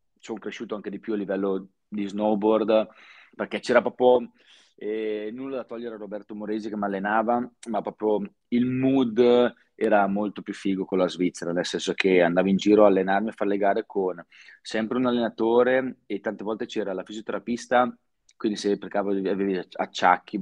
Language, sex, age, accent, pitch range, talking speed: Italian, male, 30-49, native, 95-115 Hz, 180 wpm